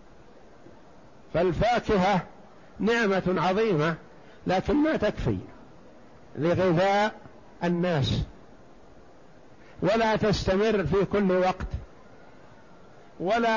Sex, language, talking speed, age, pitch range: male, Arabic, 60 wpm, 60-79, 175-210 Hz